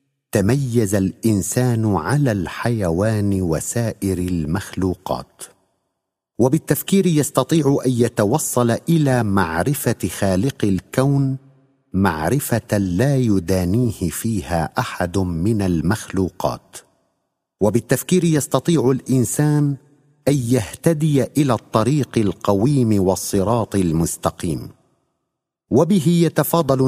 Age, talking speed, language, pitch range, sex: 50-69, 75 wpm, Arabic, 100-140 Hz, male